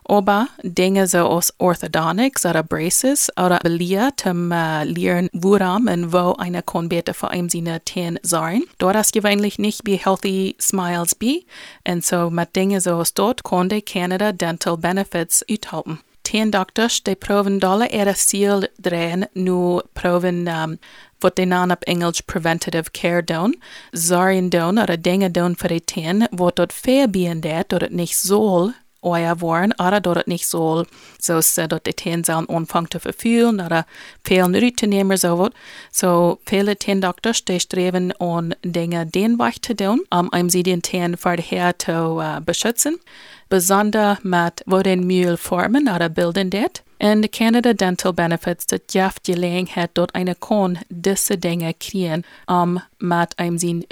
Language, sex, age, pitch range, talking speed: English, female, 30-49, 175-200 Hz, 155 wpm